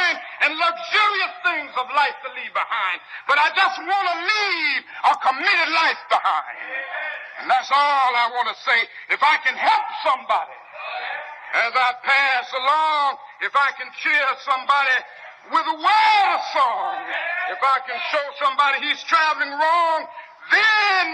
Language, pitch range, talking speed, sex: English, 260-365 Hz, 150 wpm, male